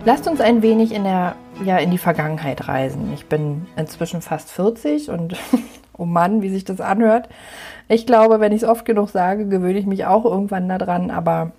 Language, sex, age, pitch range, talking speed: German, female, 30-49, 170-205 Hz, 195 wpm